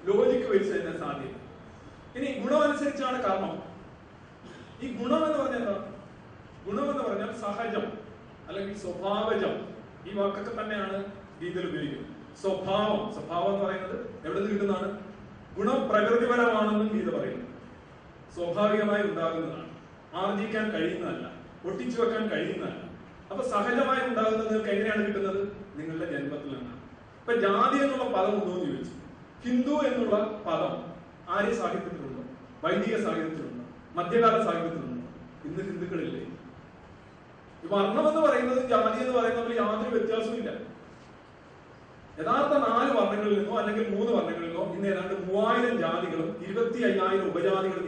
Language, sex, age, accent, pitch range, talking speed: Malayalam, male, 40-59, native, 185-235 Hz, 110 wpm